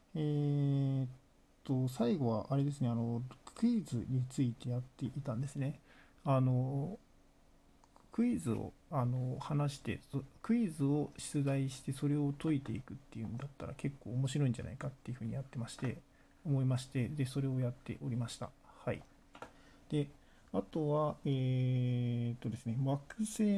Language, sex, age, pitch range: Japanese, male, 50-69, 125-145 Hz